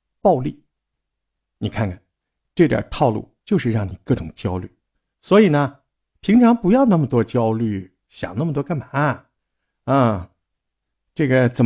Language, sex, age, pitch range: Chinese, male, 50-69, 110-165 Hz